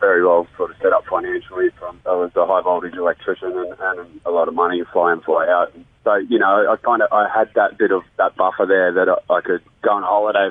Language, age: English, 20-39